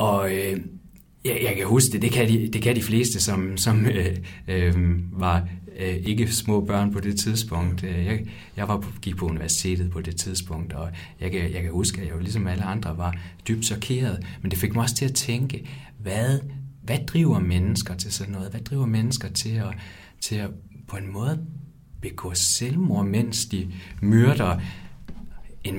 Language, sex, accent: Danish, male, native